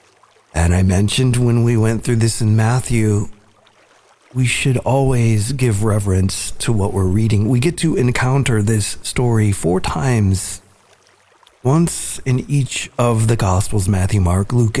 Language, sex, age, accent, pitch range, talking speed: English, male, 40-59, American, 105-125 Hz, 145 wpm